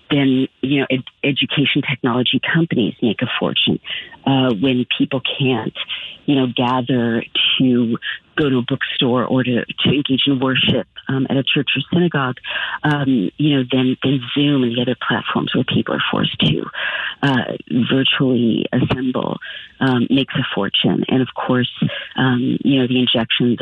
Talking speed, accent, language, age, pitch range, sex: 160 wpm, American, English, 50-69, 120-135 Hz, female